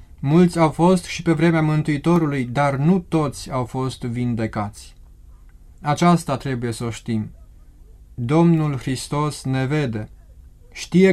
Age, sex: 20-39, male